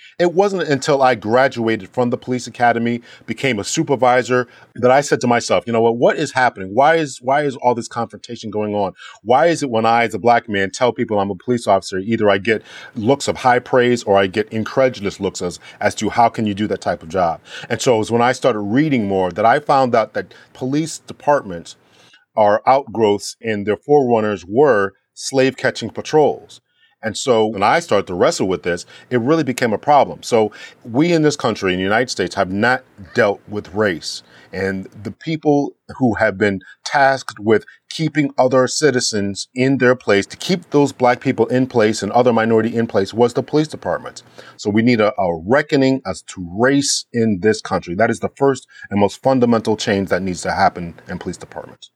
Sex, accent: male, American